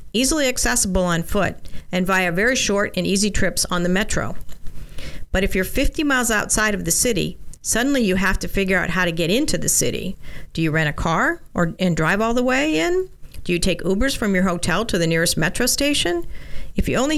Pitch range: 170-220 Hz